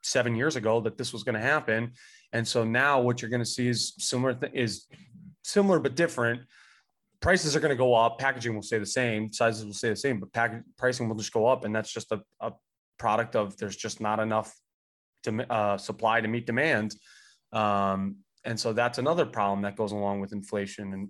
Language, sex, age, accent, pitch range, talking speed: English, male, 20-39, American, 110-140 Hz, 210 wpm